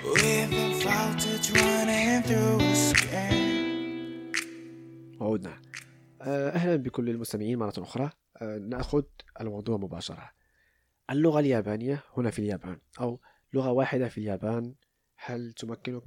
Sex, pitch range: male, 105-135 Hz